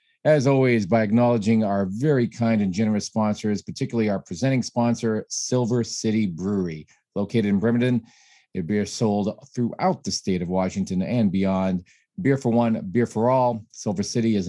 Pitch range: 95-120 Hz